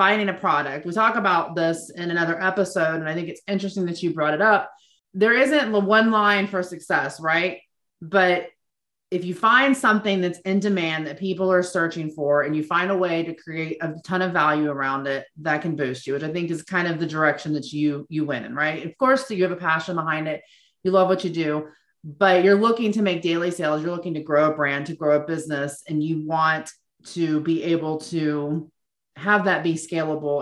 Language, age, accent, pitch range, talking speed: English, 30-49, American, 160-210 Hz, 220 wpm